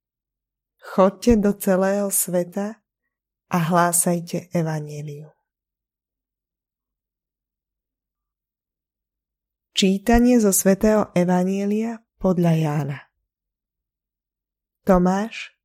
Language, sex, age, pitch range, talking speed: Slovak, female, 20-39, 165-200 Hz, 55 wpm